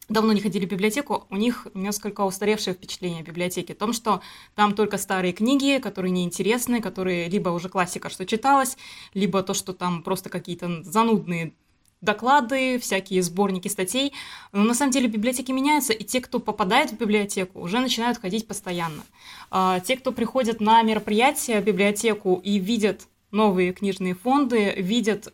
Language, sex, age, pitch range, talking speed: Russian, female, 20-39, 190-225 Hz, 160 wpm